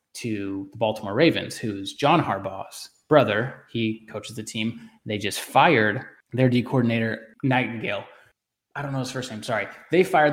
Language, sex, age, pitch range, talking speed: English, male, 20-39, 105-125 Hz, 165 wpm